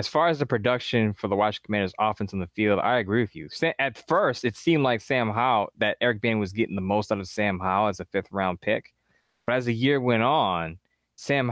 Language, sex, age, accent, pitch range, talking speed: English, male, 20-39, American, 100-120 Hz, 240 wpm